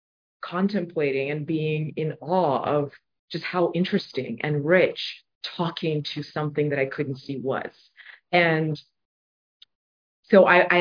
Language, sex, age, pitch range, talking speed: English, female, 30-49, 150-190 Hz, 120 wpm